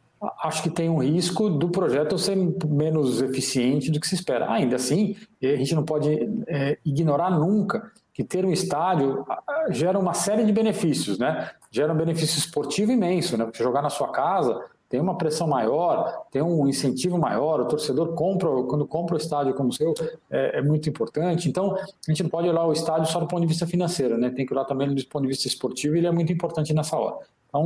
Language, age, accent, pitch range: Portuguese, 40-59, Brazilian, 140-175 Hz